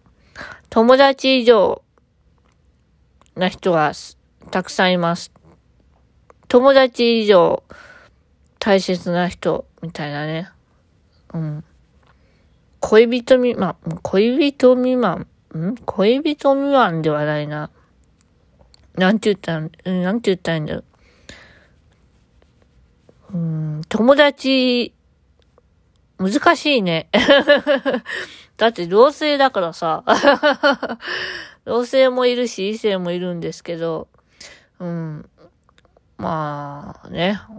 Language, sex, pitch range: Japanese, female, 165-245 Hz